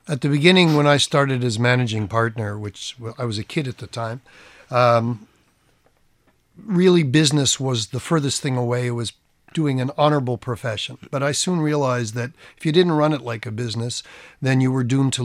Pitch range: 120-145 Hz